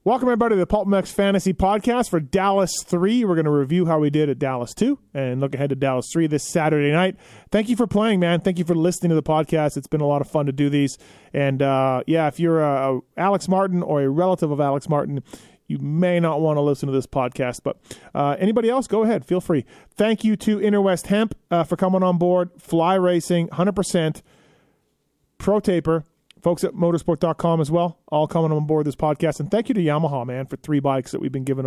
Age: 30-49